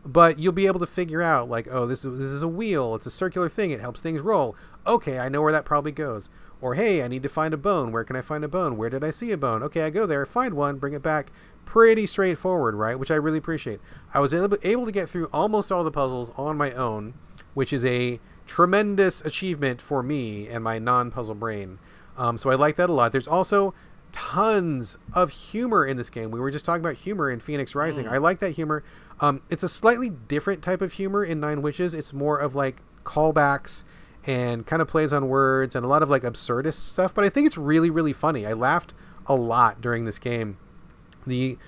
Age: 30-49